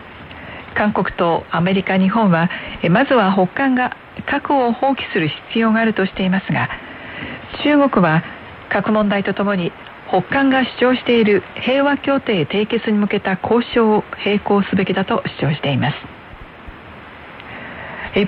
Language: Korean